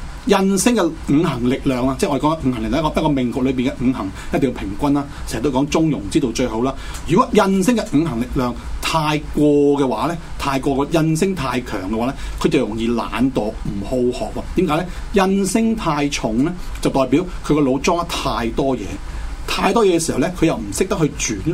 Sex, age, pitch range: male, 40-59, 115-165 Hz